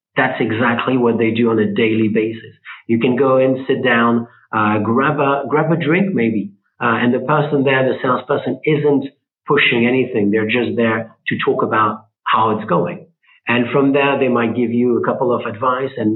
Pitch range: 110-135 Hz